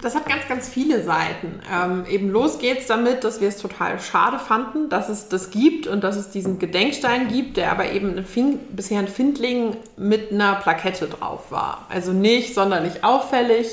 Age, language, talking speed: 20-39, German, 190 wpm